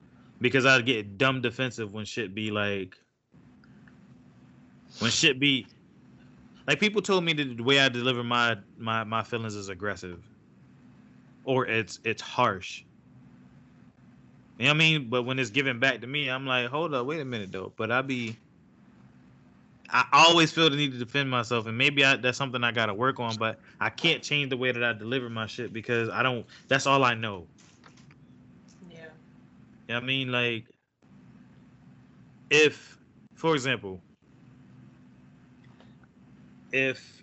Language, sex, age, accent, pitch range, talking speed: English, male, 20-39, American, 110-135 Hz, 155 wpm